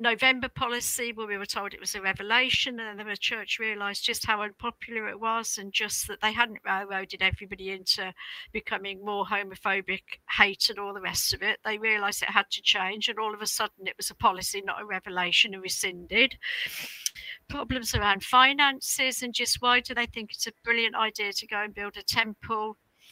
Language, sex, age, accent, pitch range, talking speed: English, female, 50-69, British, 200-240 Hz, 200 wpm